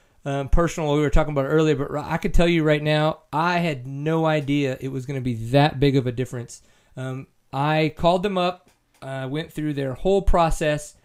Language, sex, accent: English, male, American